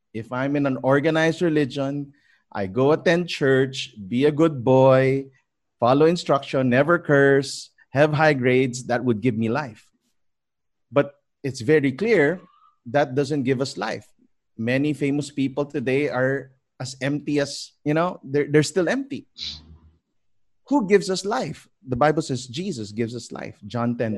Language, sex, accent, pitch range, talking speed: English, male, Filipino, 115-145 Hz, 155 wpm